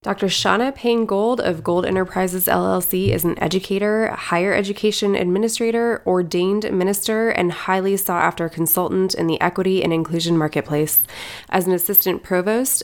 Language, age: English, 20-39